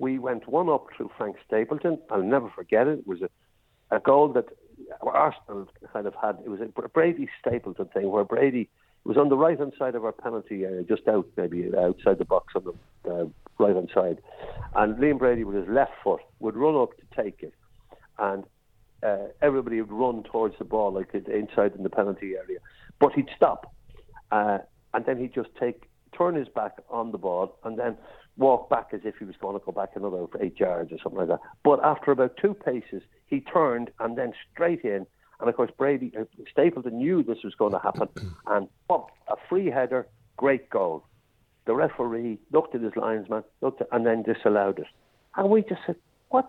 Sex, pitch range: male, 115-170 Hz